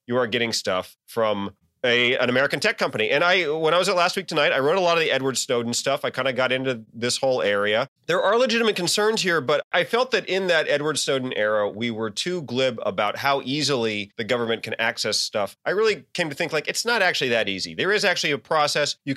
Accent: American